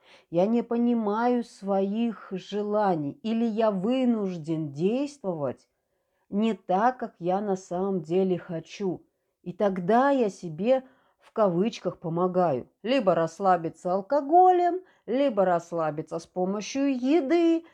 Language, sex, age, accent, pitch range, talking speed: Russian, female, 40-59, native, 180-250 Hz, 110 wpm